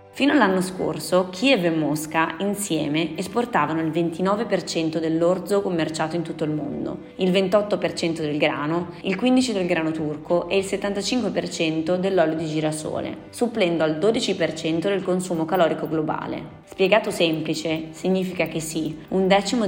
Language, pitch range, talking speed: Italian, 160-185 Hz, 135 wpm